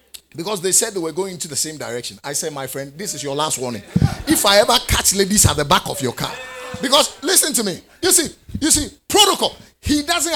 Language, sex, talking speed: English, male, 240 wpm